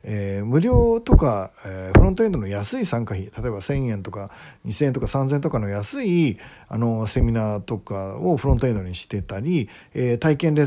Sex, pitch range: male, 100-165 Hz